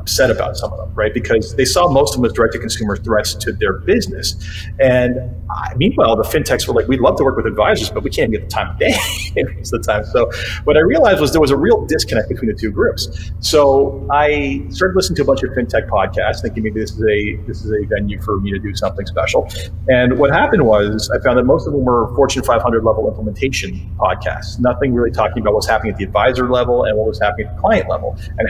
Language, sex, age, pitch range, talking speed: English, male, 40-59, 100-115 Hz, 240 wpm